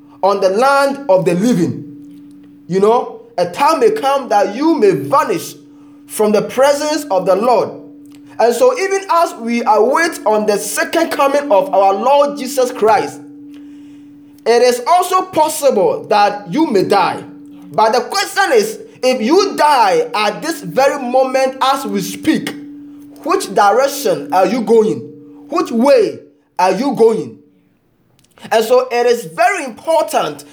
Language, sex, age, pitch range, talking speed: English, male, 20-39, 210-310 Hz, 145 wpm